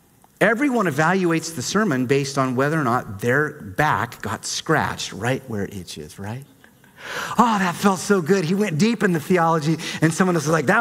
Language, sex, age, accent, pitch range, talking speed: English, male, 40-59, American, 125-195 Hz, 190 wpm